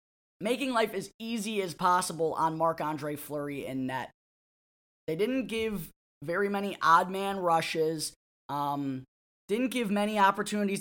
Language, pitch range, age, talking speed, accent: English, 155-195 Hz, 10-29, 135 wpm, American